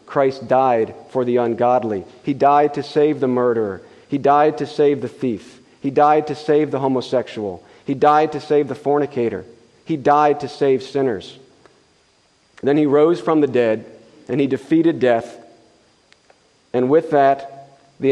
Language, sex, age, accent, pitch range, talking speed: English, male, 40-59, American, 125-150 Hz, 160 wpm